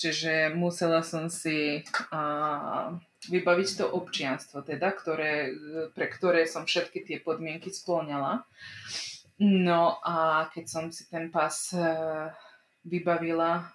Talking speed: 110 wpm